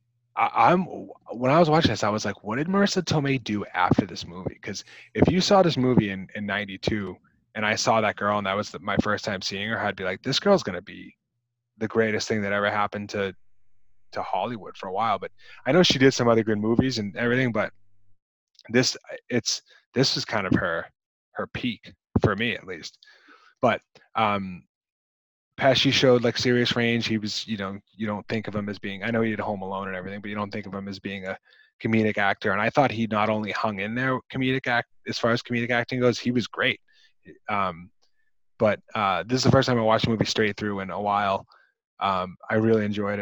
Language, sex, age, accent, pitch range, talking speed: English, male, 20-39, American, 100-120 Hz, 225 wpm